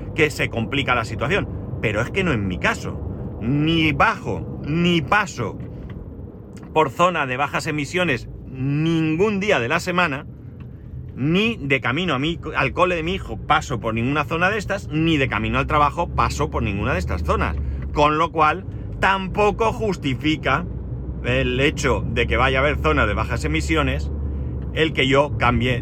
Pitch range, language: 115-160 Hz, Spanish